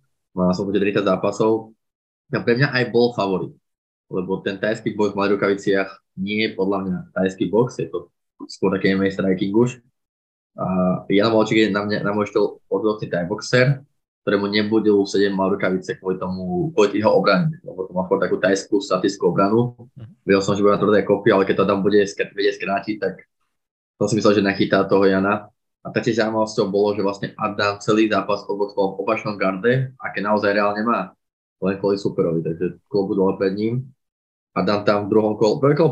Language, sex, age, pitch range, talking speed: Slovak, male, 20-39, 100-115 Hz, 180 wpm